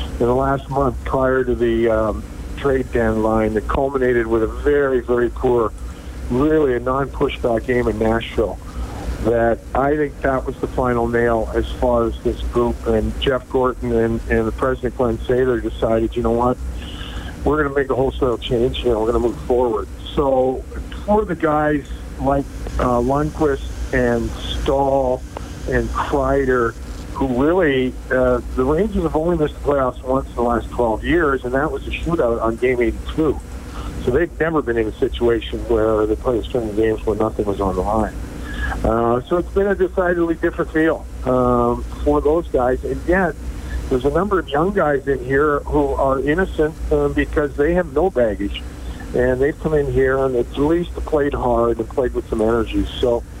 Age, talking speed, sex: 50-69, 185 wpm, male